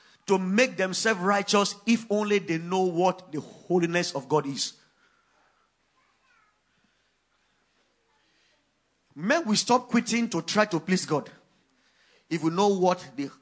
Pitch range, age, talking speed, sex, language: 175-240 Hz, 40-59, 120 wpm, male, English